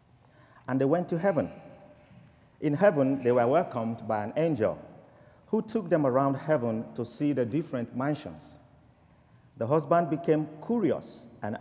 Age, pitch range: 50-69, 115-170 Hz